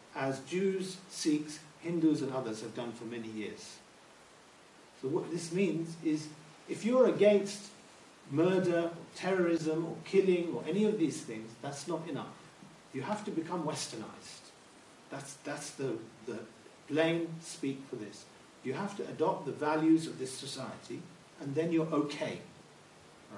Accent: British